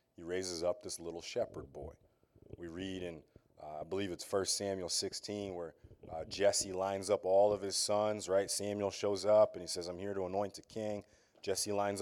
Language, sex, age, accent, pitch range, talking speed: English, male, 30-49, American, 85-100 Hz, 205 wpm